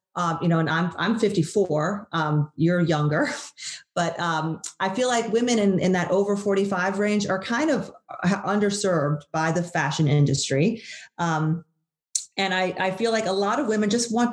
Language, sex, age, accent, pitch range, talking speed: English, female, 40-59, American, 160-200 Hz, 185 wpm